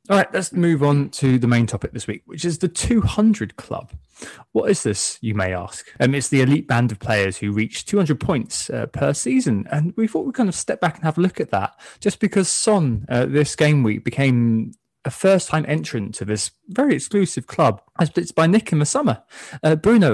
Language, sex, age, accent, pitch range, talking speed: English, male, 20-39, British, 105-155 Hz, 225 wpm